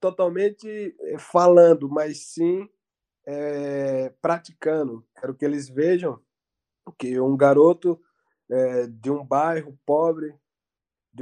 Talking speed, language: 90 wpm, Portuguese